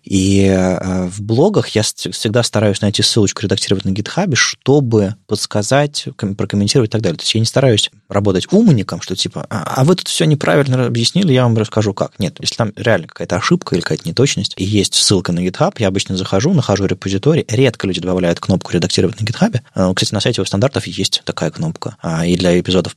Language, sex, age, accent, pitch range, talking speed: Russian, male, 20-39, native, 95-120 Hz, 195 wpm